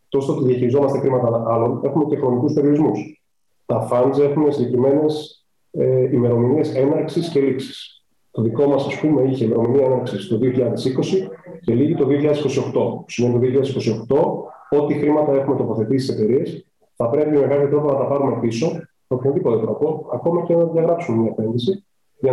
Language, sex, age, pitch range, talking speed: Greek, male, 30-49, 125-155 Hz, 160 wpm